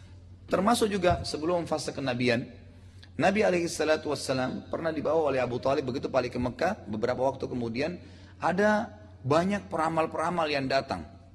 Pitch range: 105-150 Hz